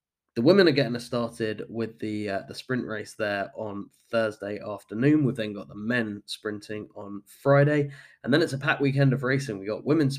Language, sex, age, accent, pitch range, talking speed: English, male, 10-29, British, 105-140 Hz, 205 wpm